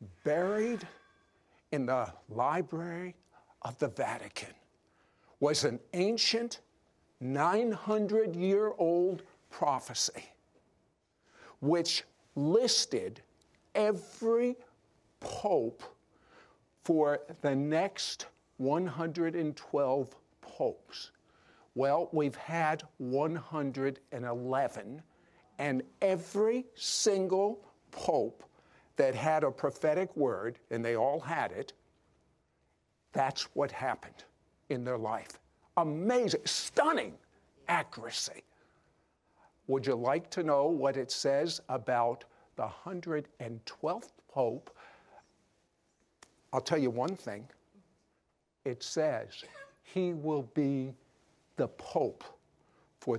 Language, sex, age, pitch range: English, male, 50-69, 130-185 Hz